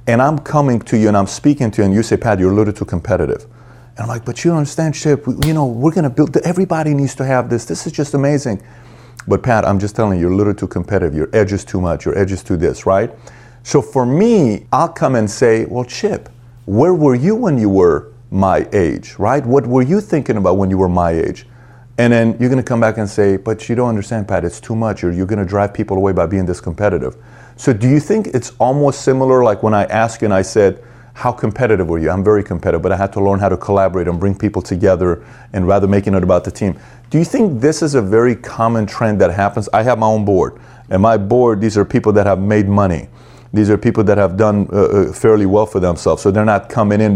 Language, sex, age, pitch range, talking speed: English, male, 40-59, 100-125 Hz, 260 wpm